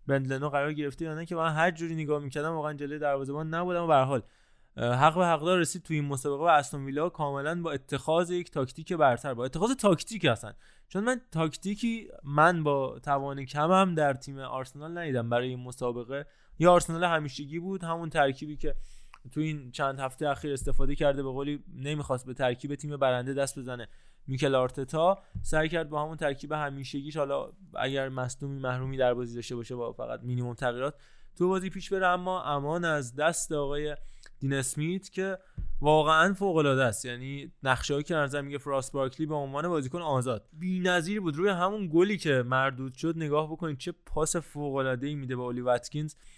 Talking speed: 185 wpm